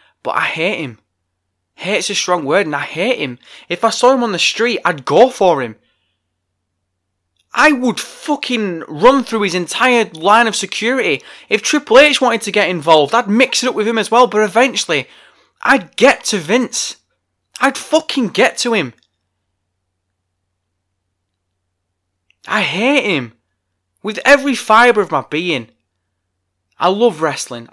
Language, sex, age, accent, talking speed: English, male, 20-39, British, 155 wpm